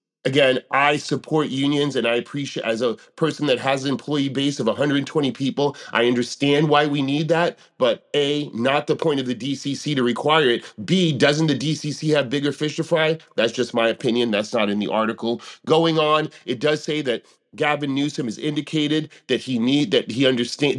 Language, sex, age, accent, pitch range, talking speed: English, male, 30-49, American, 125-150 Hz, 200 wpm